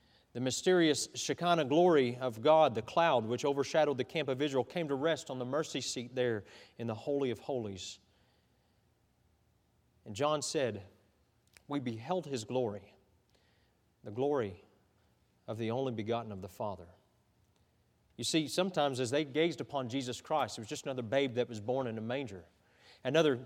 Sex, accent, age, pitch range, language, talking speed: male, American, 40-59, 115-170 Hz, English, 165 wpm